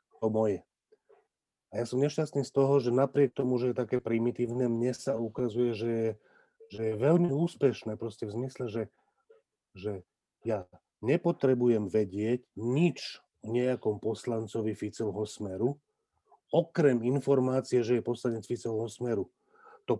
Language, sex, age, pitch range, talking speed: Slovak, male, 40-59, 115-130 Hz, 135 wpm